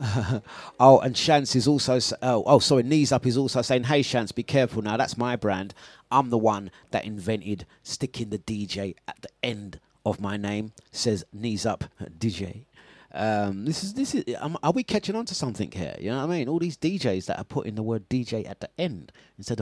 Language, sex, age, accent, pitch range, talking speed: English, male, 30-49, British, 110-150 Hz, 215 wpm